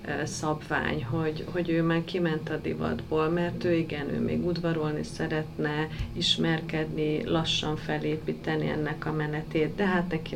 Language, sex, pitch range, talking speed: Hungarian, female, 150-165 Hz, 140 wpm